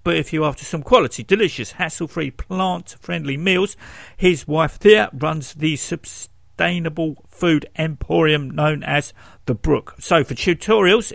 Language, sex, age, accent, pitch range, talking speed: English, male, 50-69, British, 130-190 Hz, 135 wpm